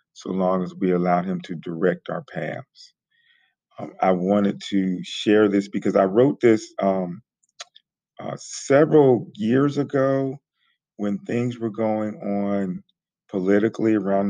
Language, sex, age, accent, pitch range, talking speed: English, male, 40-59, American, 95-110 Hz, 135 wpm